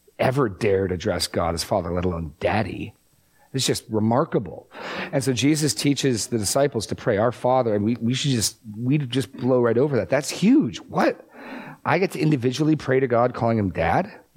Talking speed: 190 wpm